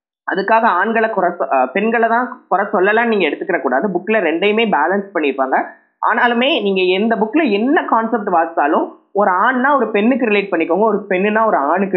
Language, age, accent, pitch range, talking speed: Tamil, 20-39, native, 180-240 Hz, 160 wpm